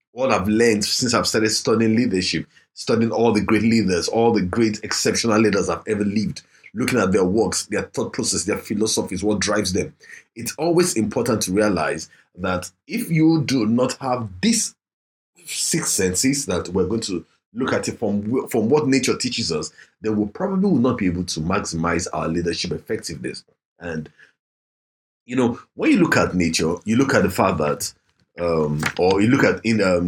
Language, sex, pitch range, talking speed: English, male, 90-125 Hz, 185 wpm